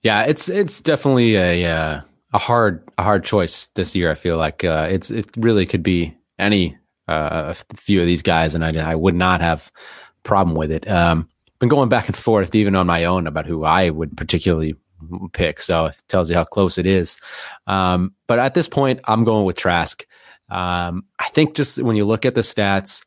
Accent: American